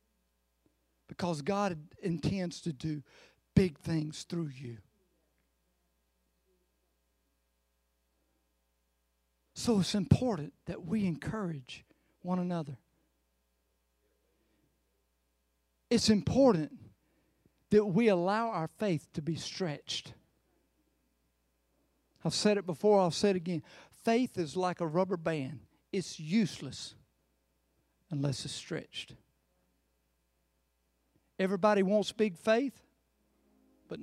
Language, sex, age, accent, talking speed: English, male, 50-69, American, 90 wpm